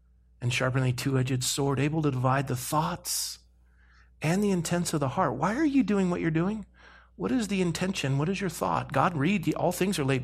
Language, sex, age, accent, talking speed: English, male, 40-59, American, 215 wpm